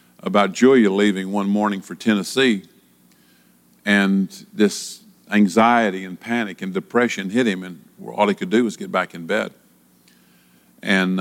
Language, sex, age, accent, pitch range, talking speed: English, male, 50-69, American, 90-125 Hz, 145 wpm